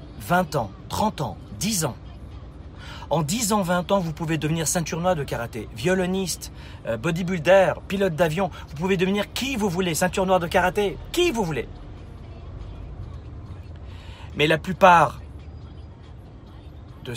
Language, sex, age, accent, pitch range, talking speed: French, male, 40-59, French, 110-165 Hz, 135 wpm